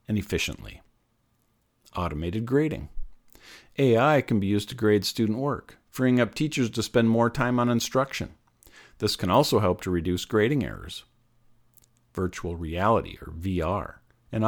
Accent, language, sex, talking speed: American, English, male, 140 wpm